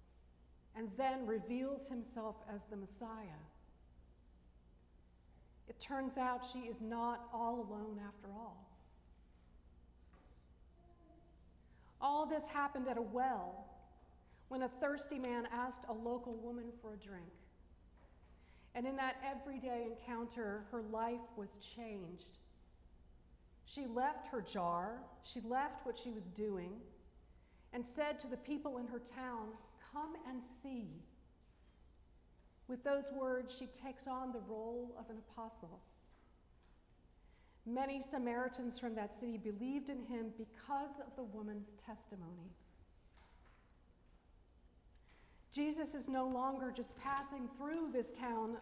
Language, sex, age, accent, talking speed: English, female, 40-59, American, 120 wpm